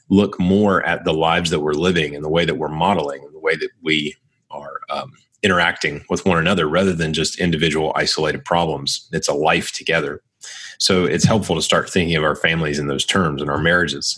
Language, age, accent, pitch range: English, 30-49, American, 80-95 Hz